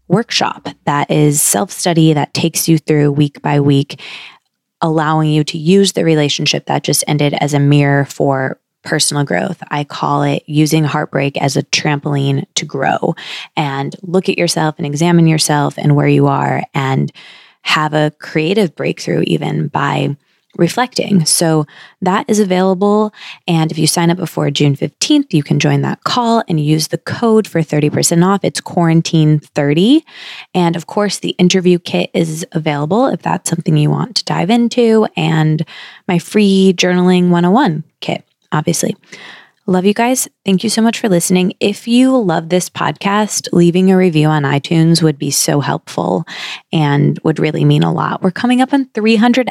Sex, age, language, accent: female, 20-39, English, American